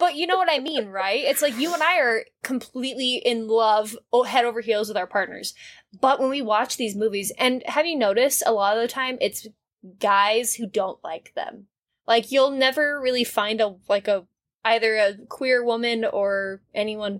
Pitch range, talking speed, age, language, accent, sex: 210-265 Hz, 200 wpm, 20-39, English, American, female